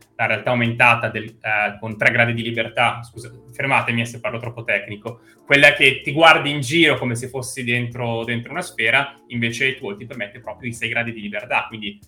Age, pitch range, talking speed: 20-39, 110-130 Hz, 205 wpm